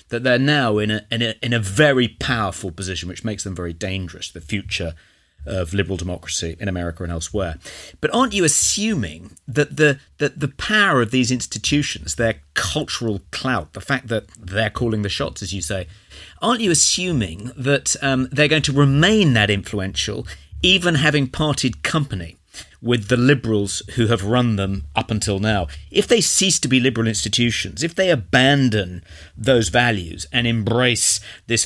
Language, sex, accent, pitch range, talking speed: English, male, British, 100-135 Hz, 170 wpm